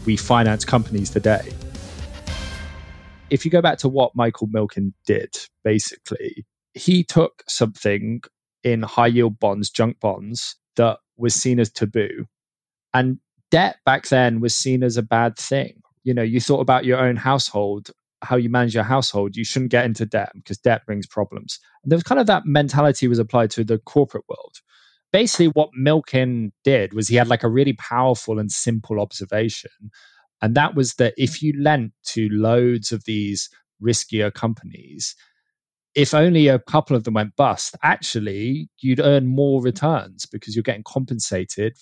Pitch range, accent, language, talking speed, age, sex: 110-135 Hz, British, English, 170 wpm, 20-39, male